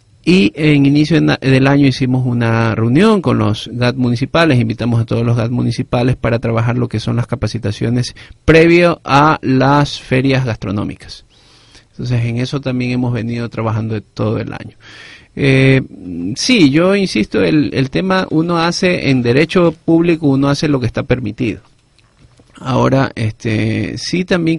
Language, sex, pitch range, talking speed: Spanish, male, 115-140 Hz, 150 wpm